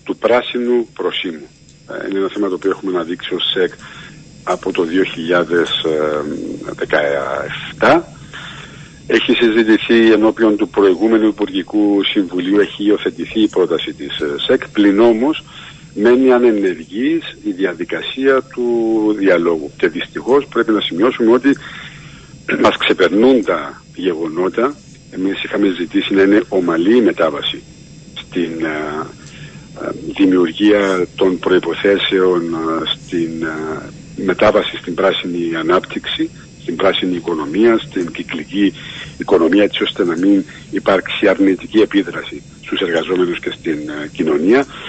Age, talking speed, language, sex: 50-69, 105 wpm, Greek, male